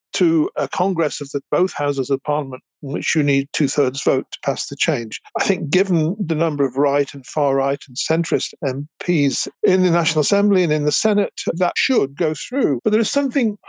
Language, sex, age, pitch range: English, male, 50-69, 145-180 Hz